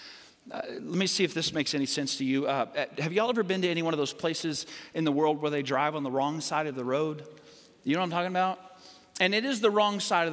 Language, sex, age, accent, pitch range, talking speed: English, male, 40-59, American, 155-215 Hz, 280 wpm